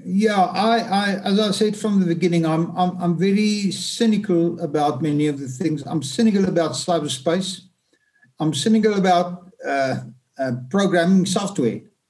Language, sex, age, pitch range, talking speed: English, male, 60-79, 170-210 Hz, 150 wpm